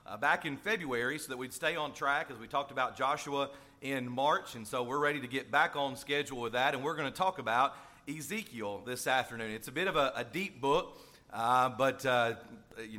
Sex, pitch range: male, 135-170 Hz